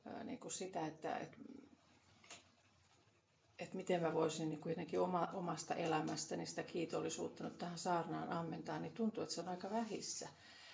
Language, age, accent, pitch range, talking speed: Finnish, 40-59, native, 165-215 Hz, 130 wpm